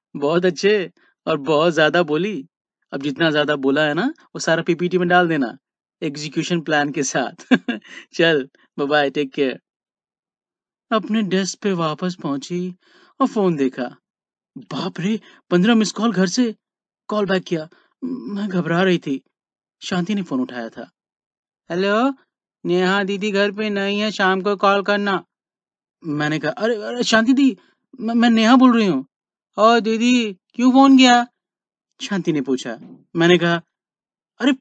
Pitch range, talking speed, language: 170-230 Hz, 150 wpm, Hindi